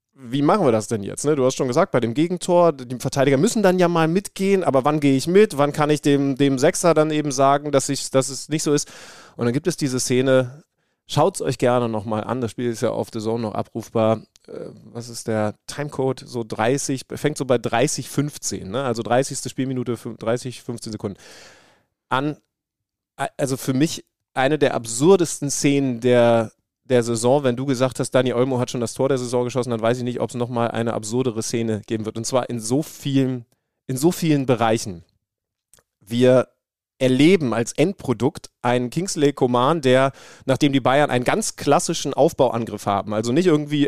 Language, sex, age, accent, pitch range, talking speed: German, male, 30-49, German, 120-145 Hz, 195 wpm